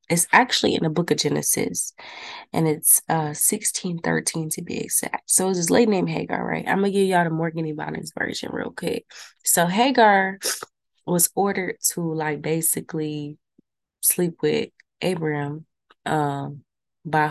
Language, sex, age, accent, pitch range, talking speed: English, female, 20-39, American, 160-220 Hz, 155 wpm